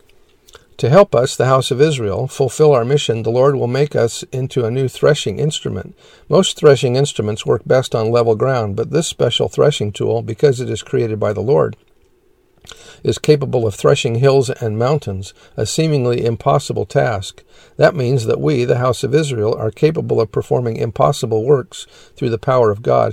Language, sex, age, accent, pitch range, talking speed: English, male, 50-69, American, 115-145 Hz, 180 wpm